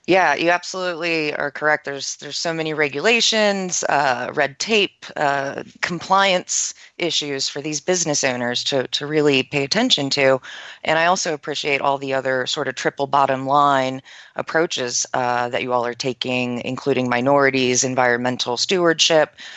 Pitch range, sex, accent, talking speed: 130-170 Hz, female, American, 150 wpm